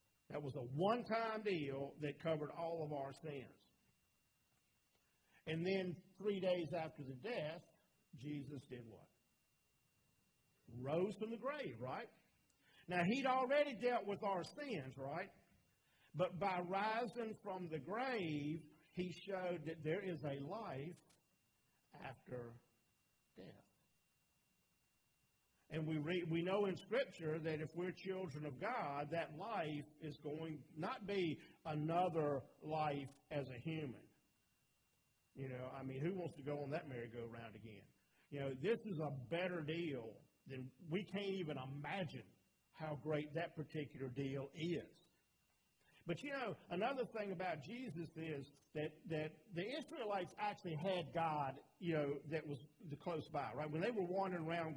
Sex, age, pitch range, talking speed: male, 50-69, 145-185 Hz, 140 wpm